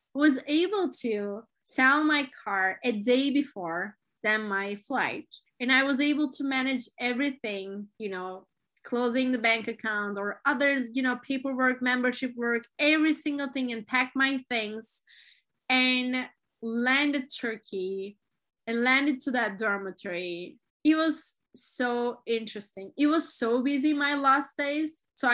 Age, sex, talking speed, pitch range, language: 20-39, female, 140 wpm, 215-275 Hz, English